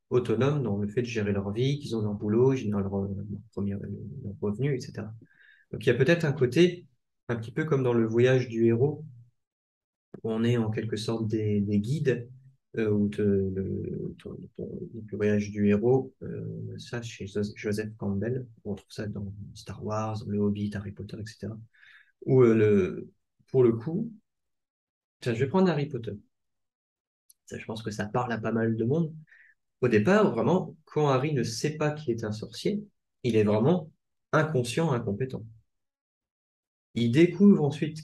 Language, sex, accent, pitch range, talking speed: French, male, French, 105-140 Hz, 185 wpm